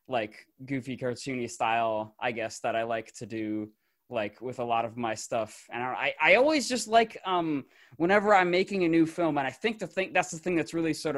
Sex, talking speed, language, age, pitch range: male, 225 wpm, English, 20-39, 125-165 Hz